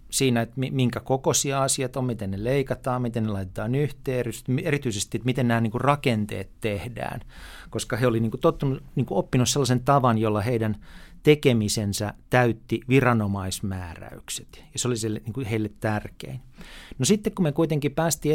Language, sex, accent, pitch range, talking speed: Finnish, male, native, 105-135 Hz, 130 wpm